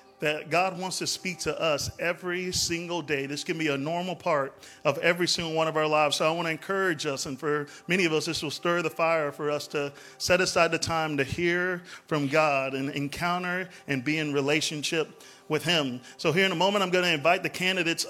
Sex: male